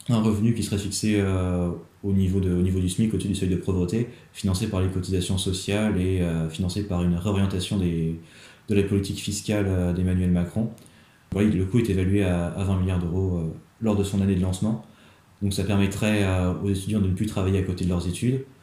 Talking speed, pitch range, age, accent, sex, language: 220 wpm, 90-100 Hz, 20-39, French, male, French